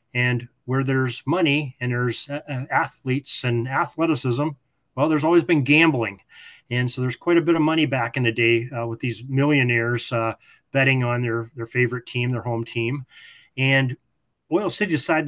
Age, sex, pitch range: 30-49, male, 115-140 Hz